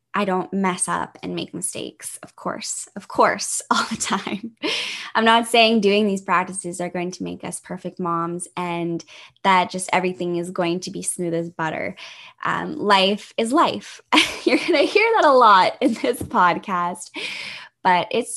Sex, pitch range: female, 185-235 Hz